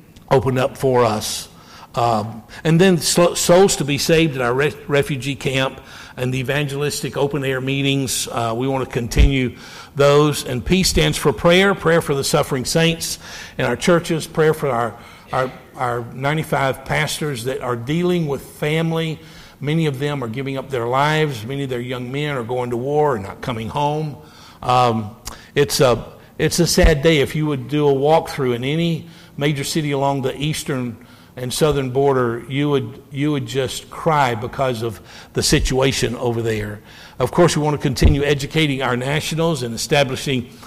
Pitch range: 125-150 Hz